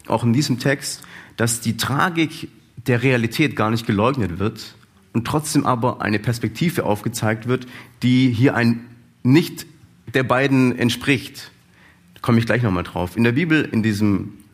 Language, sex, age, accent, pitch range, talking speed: German, male, 40-59, German, 105-130 Hz, 155 wpm